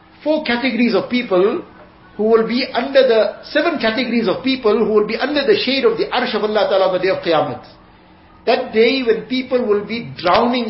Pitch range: 195-250 Hz